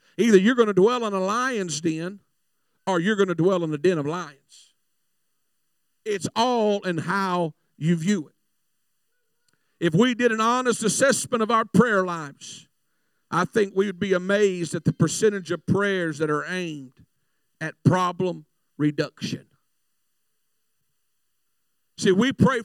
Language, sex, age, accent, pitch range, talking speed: English, male, 50-69, American, 170-220 Hz, 145 wpm